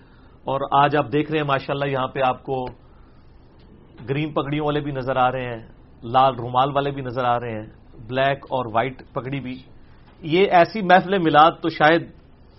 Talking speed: 180 wpm